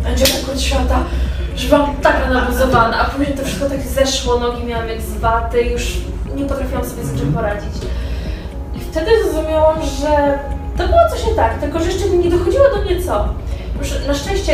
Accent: native